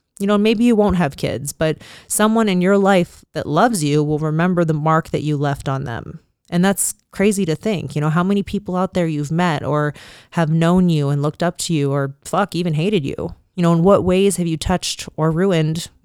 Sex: female